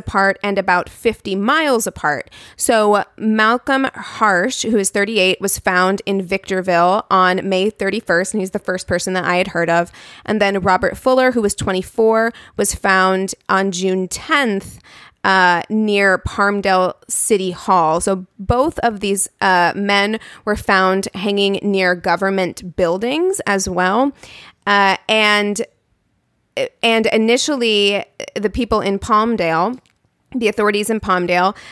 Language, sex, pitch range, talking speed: English, female, 190-220 Hz, 135 wpm